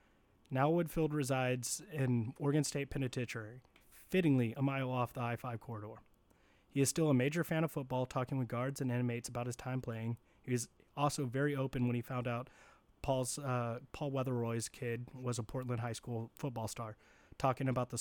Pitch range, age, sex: 120-135 Hz, 30-49, male